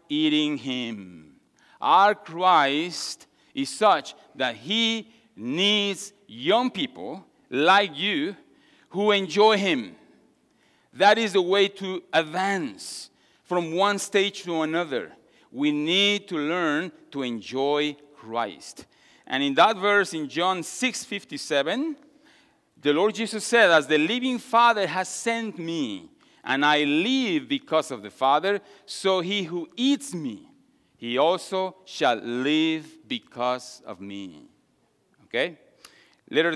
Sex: male